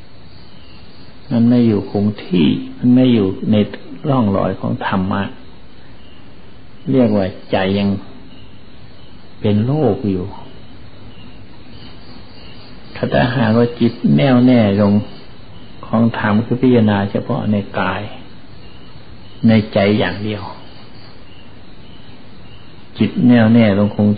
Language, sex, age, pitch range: Thai, male, 60-79, 100-120 Hz